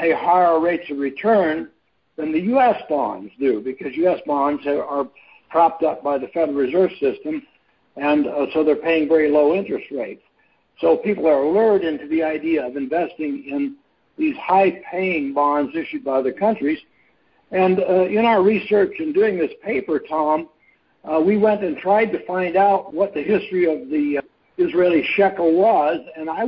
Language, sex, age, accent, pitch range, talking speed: English, male, 60-79, American, 155-200 Hz, 170 wpm